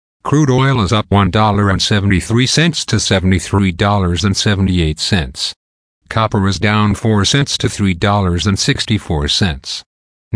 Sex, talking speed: male, 80 wpm